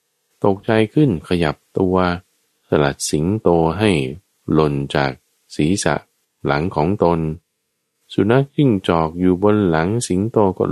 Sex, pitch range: male, 80-115 Hz